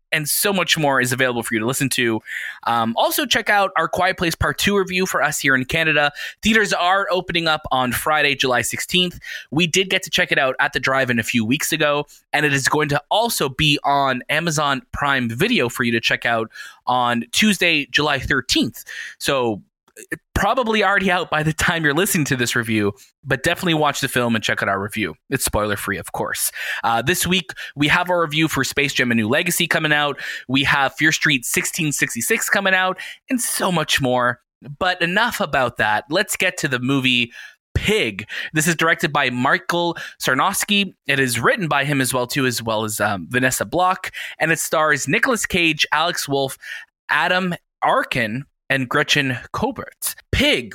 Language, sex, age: English, male, 20-39